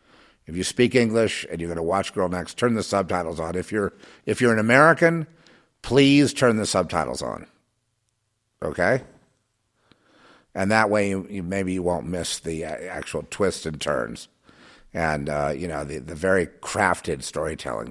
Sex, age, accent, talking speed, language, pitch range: male, 50-69, American, 165 wpm, English, 85-115 Hz